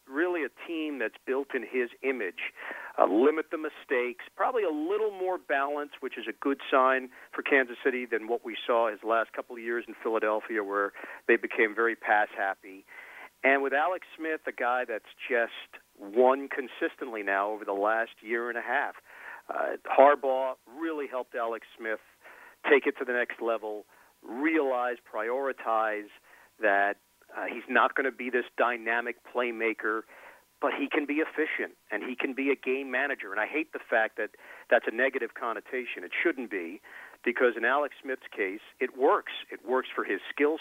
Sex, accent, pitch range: male, American, 115-150 Hz